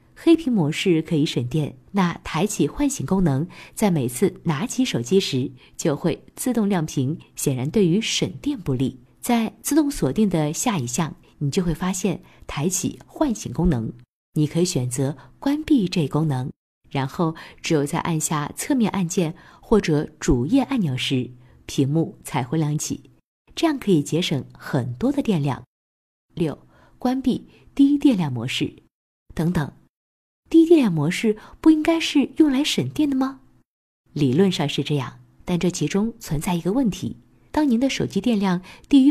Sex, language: female, Chinese